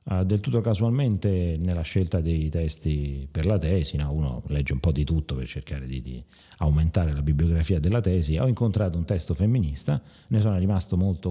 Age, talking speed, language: 40-59, 190 wpm, Italian